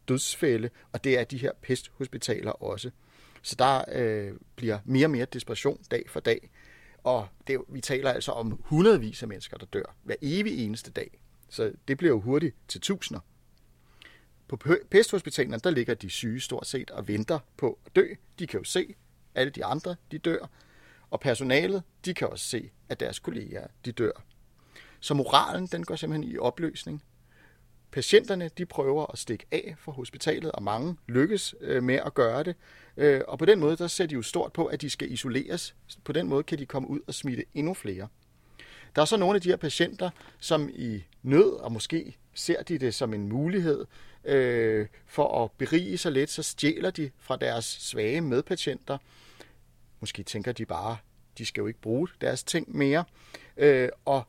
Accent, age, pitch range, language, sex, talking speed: native, 30-49, 115-160 Hz, Danish, male, 180 wpm